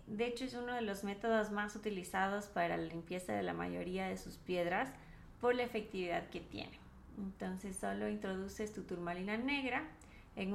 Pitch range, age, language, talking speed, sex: 175-230 Hz, 20-39, Spanish, 170 wpm, female